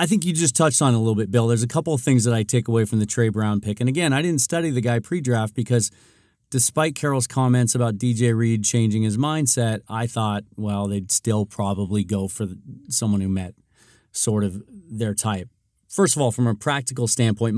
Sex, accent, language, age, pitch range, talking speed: male, American, English, 40-59, 105-125 Hz, 220 wpm